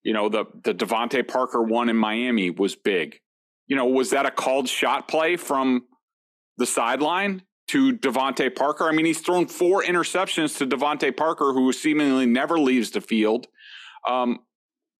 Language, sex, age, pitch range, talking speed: English, male, 30-49, 140-205 Hz, 165 wpm